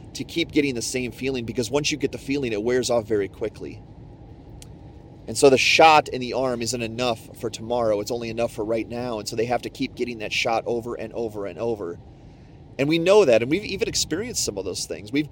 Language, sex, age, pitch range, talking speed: English, male, 30-49, 105-140 Hz, 240 wpm